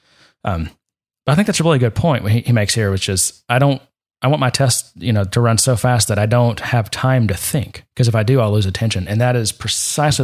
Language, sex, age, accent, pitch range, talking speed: English, male, 30-49, American, 105-125 Hz, 250 wpm